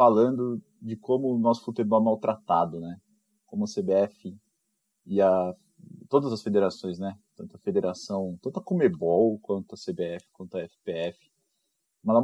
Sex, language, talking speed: male, Portuguese, 150 wpm